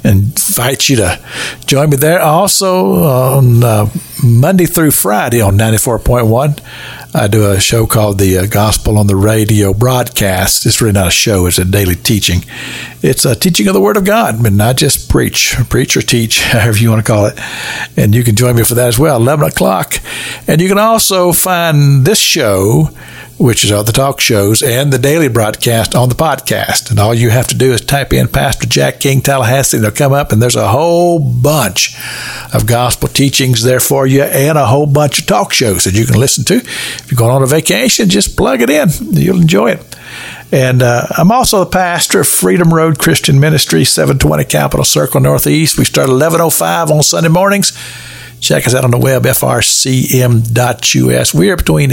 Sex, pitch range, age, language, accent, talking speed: male, 110-155 Hz, 60-79, English, American, 195 wpm